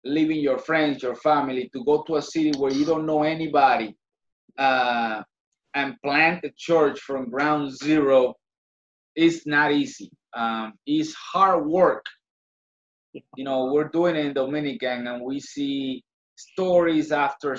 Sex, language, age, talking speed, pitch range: male, English, 30-49, 145 wpm, 135-165 Hz